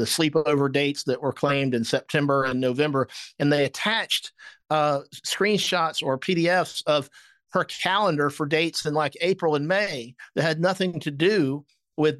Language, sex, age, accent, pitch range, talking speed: English, male, 50-69, American, 140-175 Hz, 160 wpm